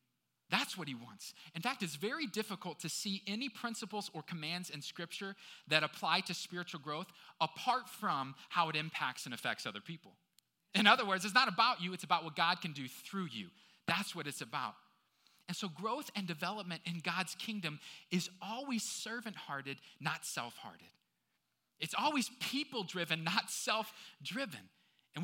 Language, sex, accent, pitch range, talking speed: English, male, American, 175-225 Hz, 165 wpm